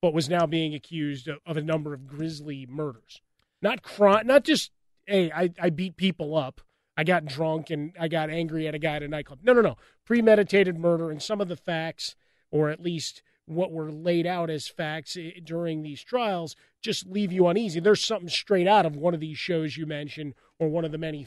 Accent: American